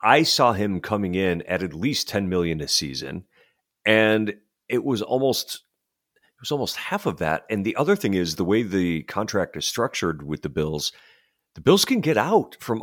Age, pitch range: 40-59, 90-120 Hz